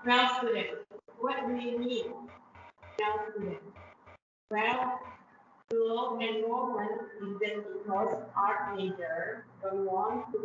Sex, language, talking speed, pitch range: female, Indonesian, 115 wpm, 200-245 Hz